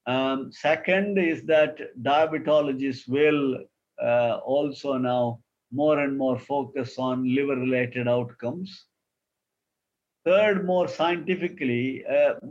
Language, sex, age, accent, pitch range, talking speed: English, male, 50-69, Indian, 130-160 Hz, 95 wpm